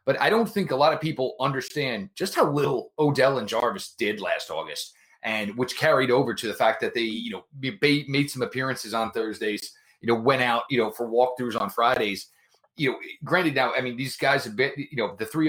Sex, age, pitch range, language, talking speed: male, 30-49, 120-145 Hz, English, 225 wpm